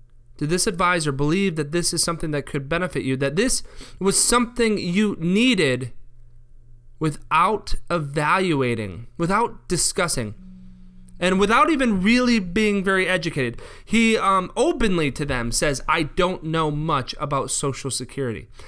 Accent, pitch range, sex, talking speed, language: American, 120-180 Hz, male, 135 wpm, English